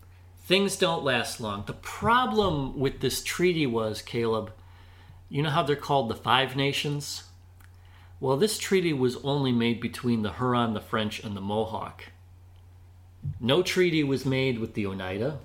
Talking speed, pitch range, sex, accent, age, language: 155 wpm, 95-140 Hz, male, American, 40-59, English